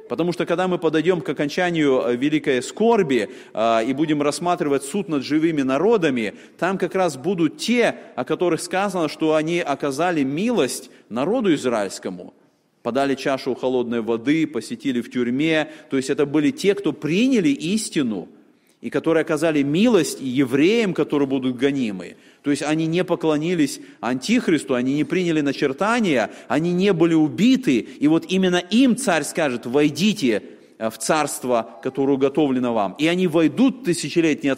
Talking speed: 145 wpm